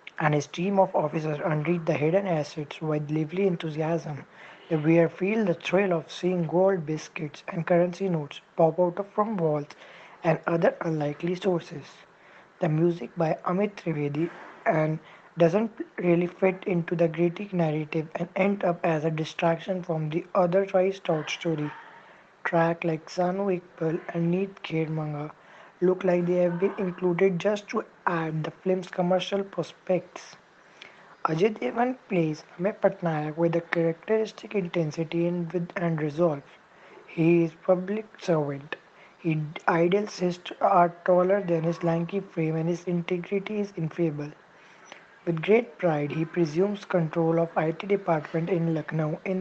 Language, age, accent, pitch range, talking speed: English, 20-39, Indian, 160-185 Hz, 150 wpm